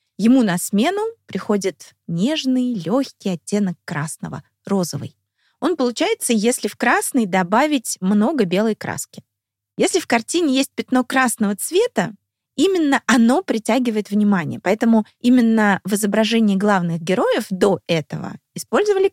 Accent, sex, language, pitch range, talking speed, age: native, female, Russian, 180-235 Hz, 120 wpm, 20-39